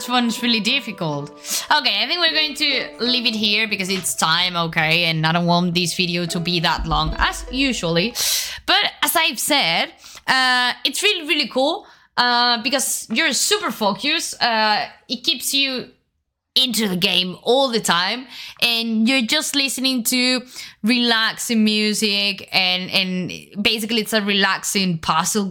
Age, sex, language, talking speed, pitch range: 20-39, female, Italian, 155 wpm, 185-275 Hz